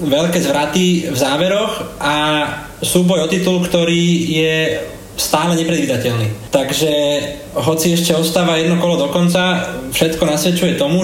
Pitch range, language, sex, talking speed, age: 145-175 Hz, Slovak, male, 120 wpm, 20-39